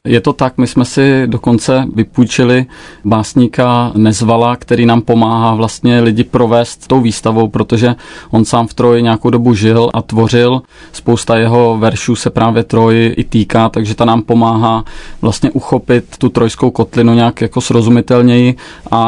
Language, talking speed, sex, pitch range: Czech, 155 wpm, male, 115-120 Hz